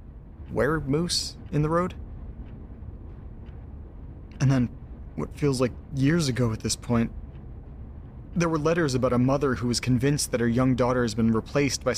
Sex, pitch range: male, 105-135 Hz